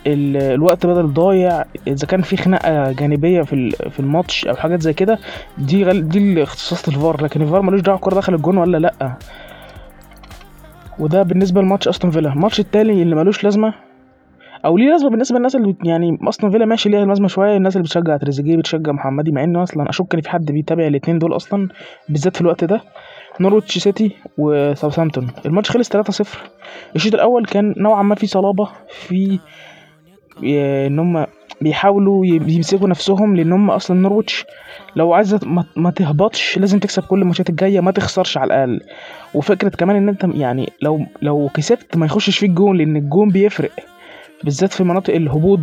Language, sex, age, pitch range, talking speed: Arabic, male, 20-39, 155-200 Hz, 165 wpm